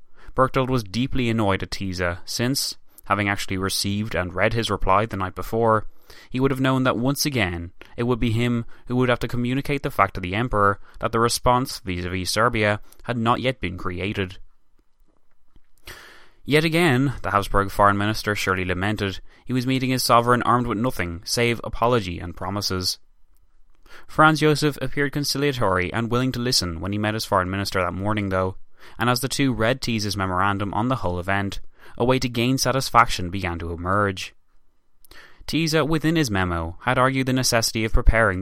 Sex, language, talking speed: male, English, 180 wpm